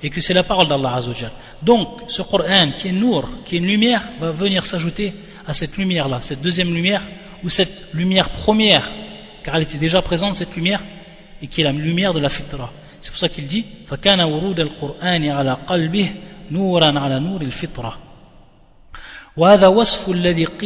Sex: male